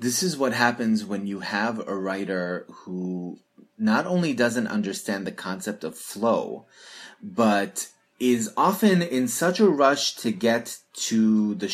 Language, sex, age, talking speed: English, male, 30-49, 150 wpm